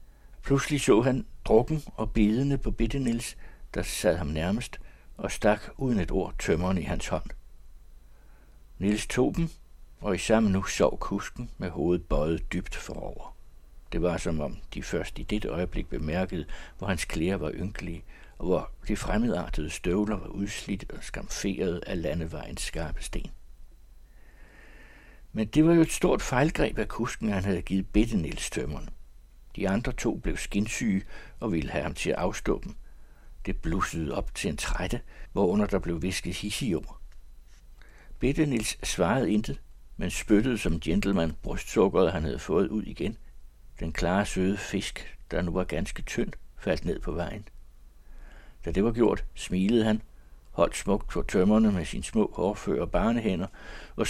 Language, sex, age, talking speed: Danish, male, 60-79, 160 wpm